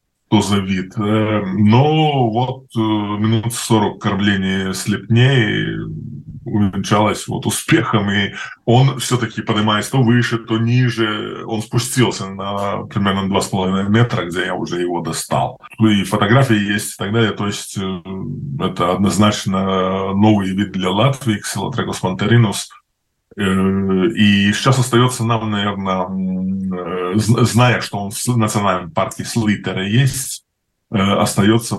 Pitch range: 95-115 Hz